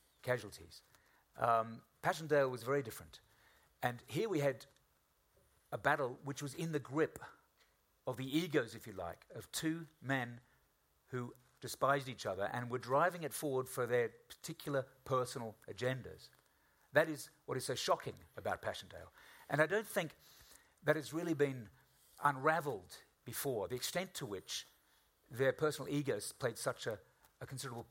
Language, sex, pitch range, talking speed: English, male, 120-145 Hz, 150 wpm